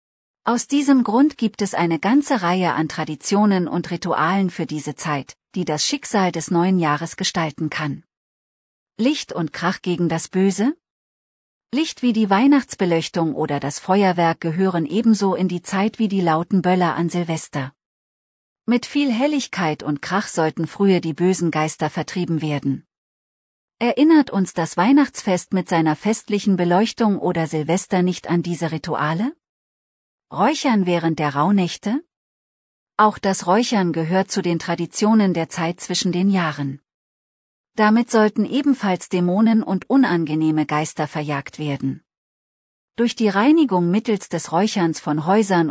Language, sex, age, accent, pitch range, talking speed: German, female, 40-59, German, 165-215 Hz, 140 wpm